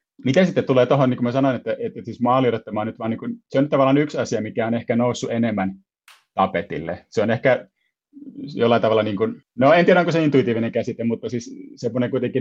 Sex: male